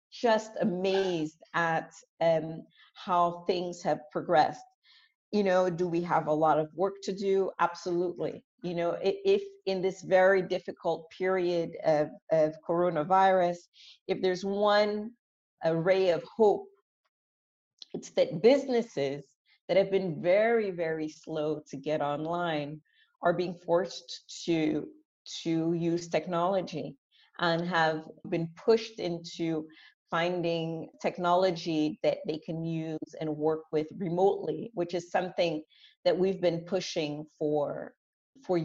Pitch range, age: 155-190 Hz, 40-59